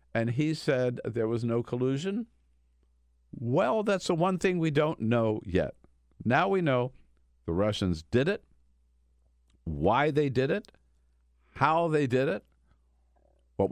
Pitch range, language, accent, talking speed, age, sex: 70-115 Hz, English, American, 140 wpm, 50-69, male